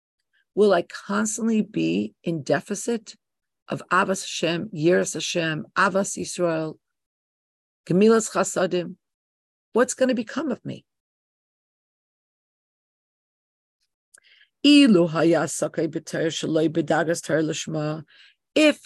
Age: 50-69